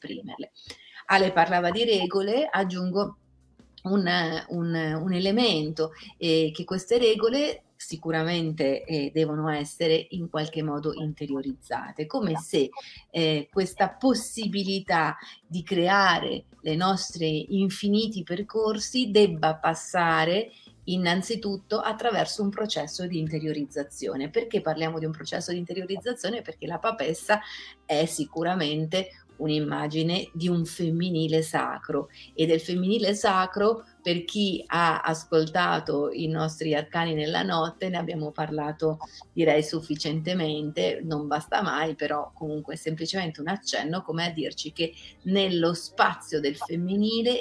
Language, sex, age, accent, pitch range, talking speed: Italian, female, 30-49, native, 155-195 Hz, 115 wpm